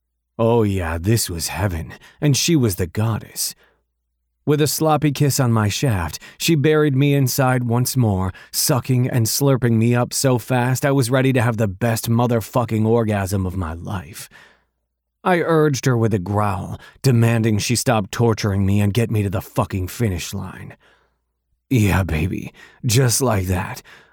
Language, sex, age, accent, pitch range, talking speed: English, male, 30-49, American, 95-130 Hz, 165 wpm